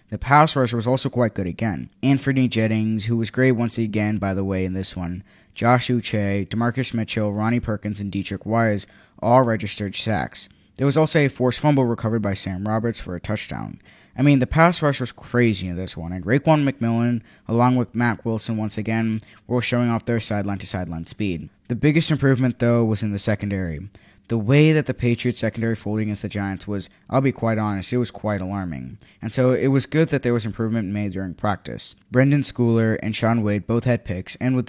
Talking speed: 210 wpm